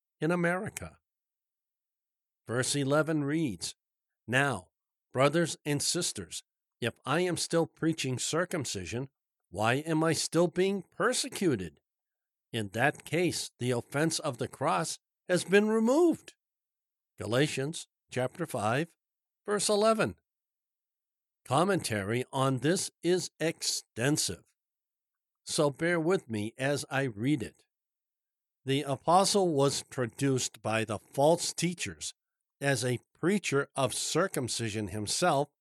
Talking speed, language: 110 wpm, English